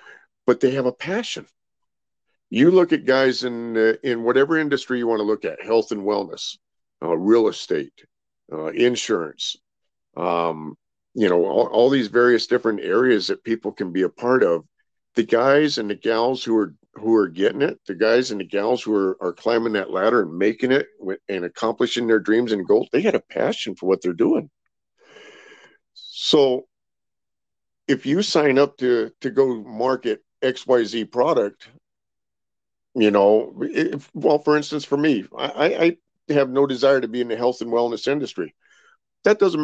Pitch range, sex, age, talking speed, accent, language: 115-150 Hz, male, 50-69, 175 wpm, American, English